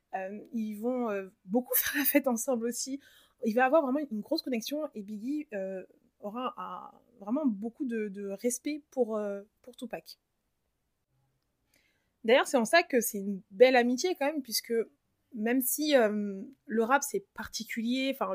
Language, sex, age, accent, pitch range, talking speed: French, female, 20-39, French, 200-250 Hz, 145 wpm